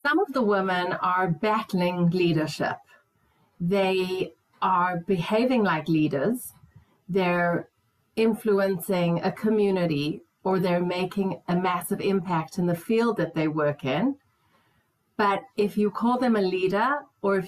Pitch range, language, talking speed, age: 180-225 Hz, English, 130 wpm, 40-59